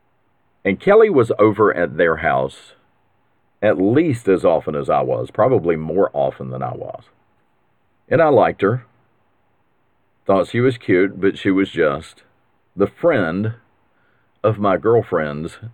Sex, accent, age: male, American, 50-69